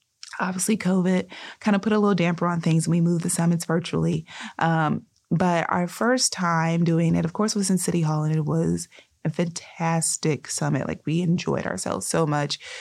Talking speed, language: 190 wpm, English